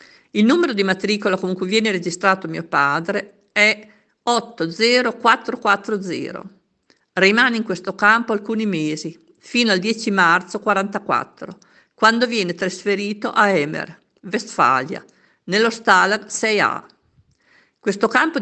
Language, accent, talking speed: Italian, native, 110 wpm